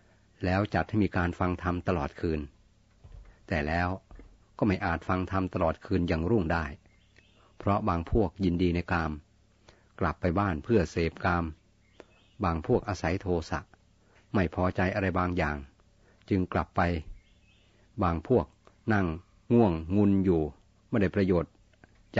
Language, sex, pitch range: Thai, male, 85-100 Hz